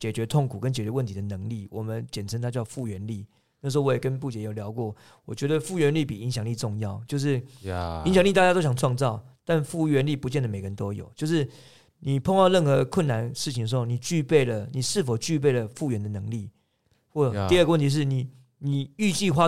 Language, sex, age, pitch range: Chinese, male, 40-59, 115-150 Hz